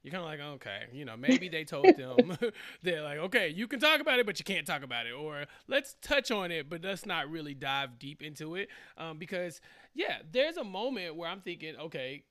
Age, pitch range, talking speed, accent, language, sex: 30-49, 145-200 Hz, 235 wpm, American, English, male